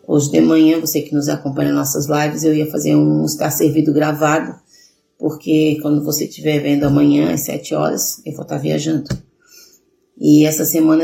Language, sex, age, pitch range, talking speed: Portuguese, female, 30-49, 150-165 Hz, 180 wpm